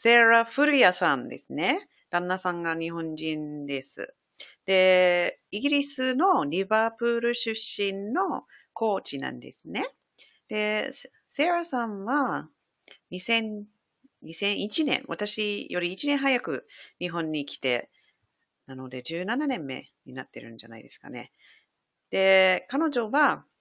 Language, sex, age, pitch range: English, female, 40-59, 150-240 Hz